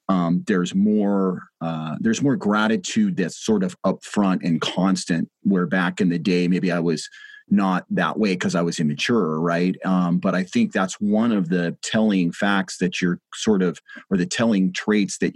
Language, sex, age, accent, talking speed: English, male, 30-49, American, 190 wpm